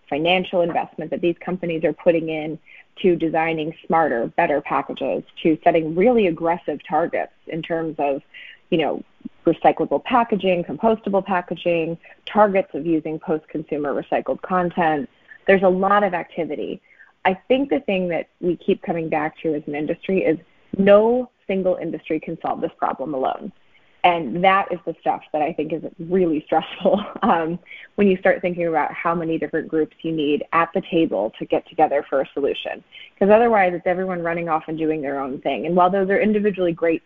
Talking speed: 175 wpm